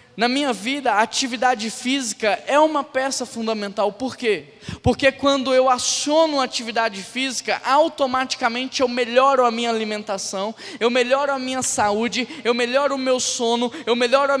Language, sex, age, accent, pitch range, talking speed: Portuguese, male, 10-29, Brazilian, 185-250 Hz, 160 wpm